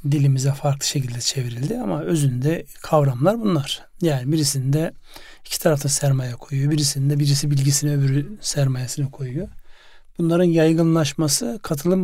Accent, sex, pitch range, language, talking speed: native, male, 140-160 Hz, Turkish, 115 wpm